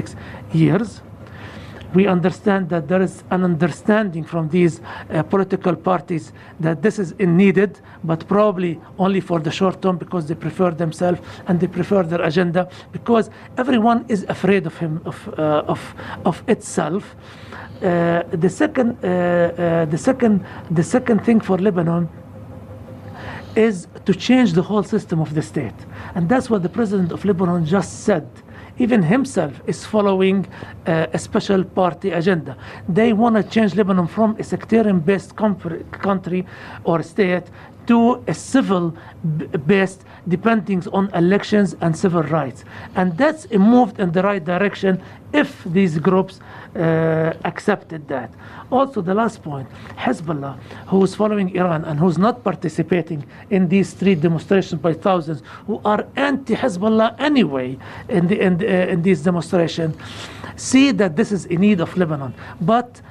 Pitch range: 165-200 Hz